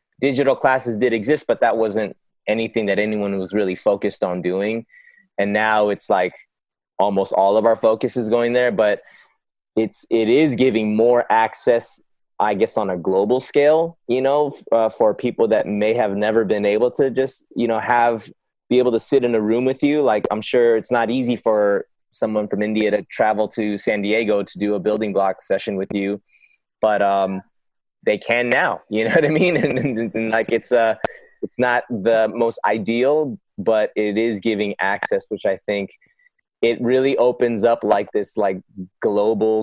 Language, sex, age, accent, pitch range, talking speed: English, male, 20-39, American, 100-125 Hz, 190 wpm